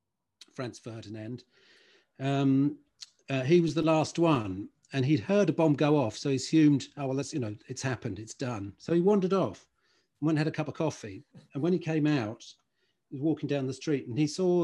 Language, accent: English, British